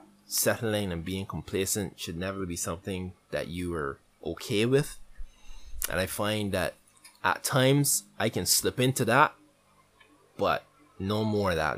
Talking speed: 145 wpm